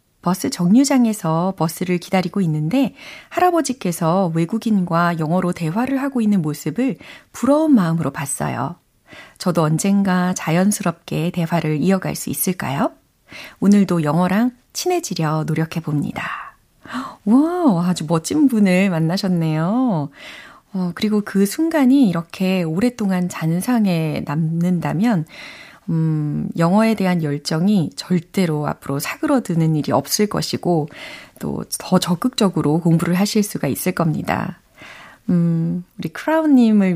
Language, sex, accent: Korean, female, native